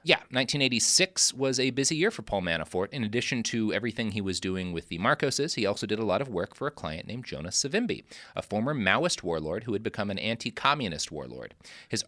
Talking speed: 215 wpm